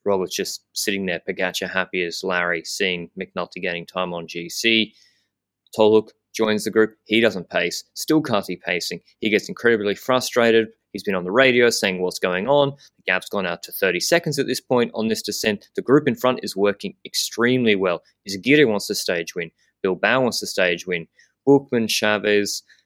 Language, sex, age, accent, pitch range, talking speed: English, male, 20-39, Australian, 95-115 Hz, 185 wpm